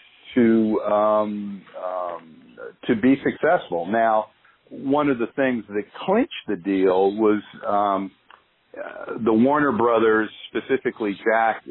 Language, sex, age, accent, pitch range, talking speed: English, male, 50-69, American, 95-110 Hz, 115 wpm